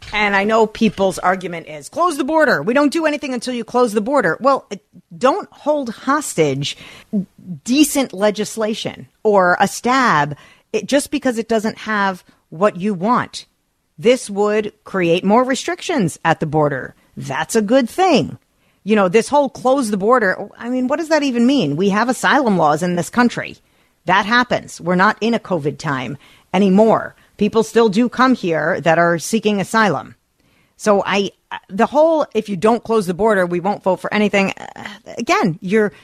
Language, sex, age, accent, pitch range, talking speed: English, female, 40-59, American, 185-245 Hz, 170 wpm